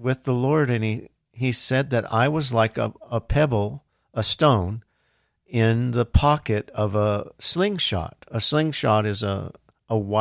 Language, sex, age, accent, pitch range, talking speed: English, male, 50-69, American, 110-135 Hz, 160 wpm